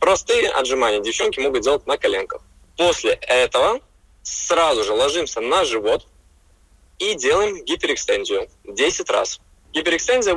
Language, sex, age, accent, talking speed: Russian, male, 20-39, native, 115 wpm